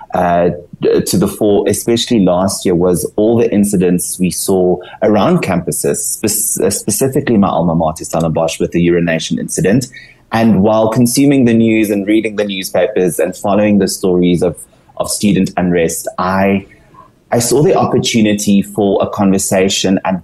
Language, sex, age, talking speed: English, male, 30-49, 150 wpm